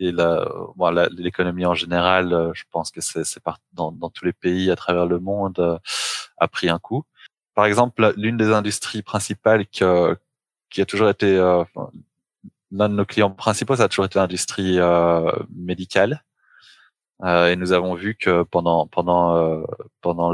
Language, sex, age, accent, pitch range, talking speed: English, male, 20-39, French, 85-95 Hz, 185 wpm